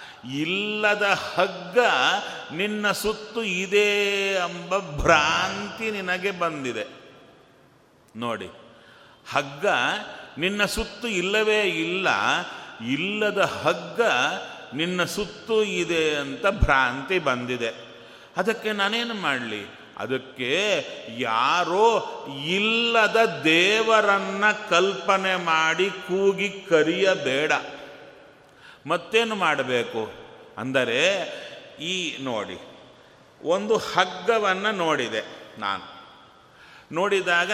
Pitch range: 155-210 Hz